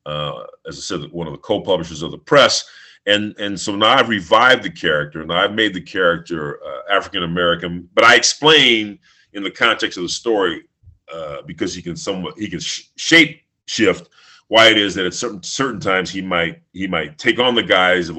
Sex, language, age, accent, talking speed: male, English, 40-59, American, 205 wpm